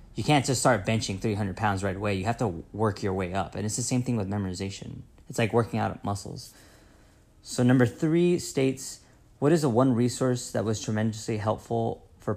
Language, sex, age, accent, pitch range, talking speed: English, male, 20-39, American, 100-120 Hz, 205 wpm